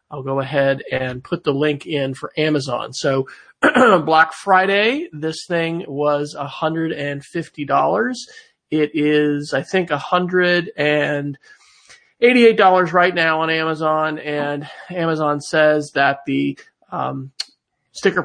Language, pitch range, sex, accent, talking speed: English, 145-180 Hz, male, American, 105 wpm